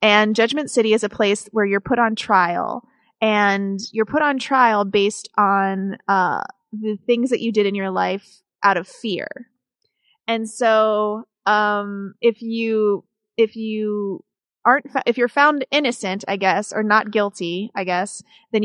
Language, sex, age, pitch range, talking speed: English, female, 30-49, 200-240 Hz, 165 wpm